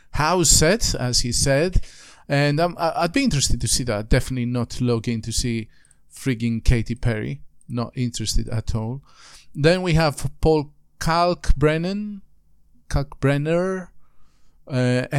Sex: male